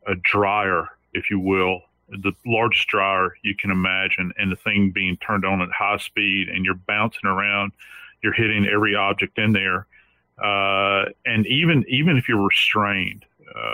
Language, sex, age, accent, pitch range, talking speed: English, male, 40-59, American, 100-110 Hz, 160 wpm